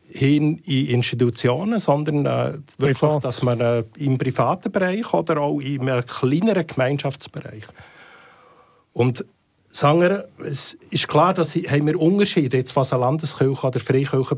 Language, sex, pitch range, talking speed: German, male, 120-145 Hz, 140 wpm